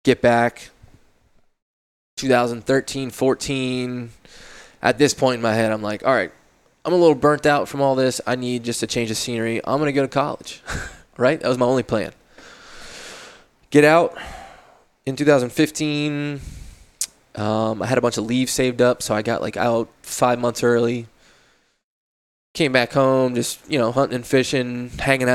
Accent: American